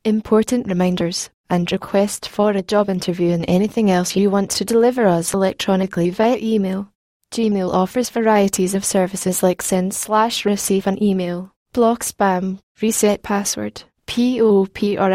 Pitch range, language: 190-220 Hz, English